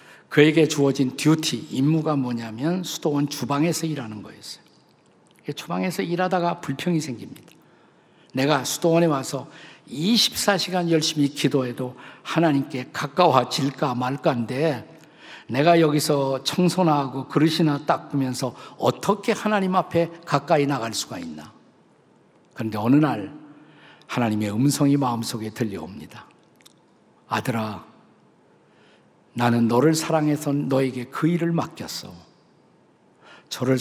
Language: Korean